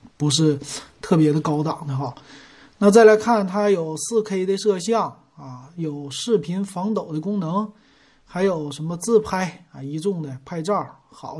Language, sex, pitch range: Chinese, male, 150-200 Hz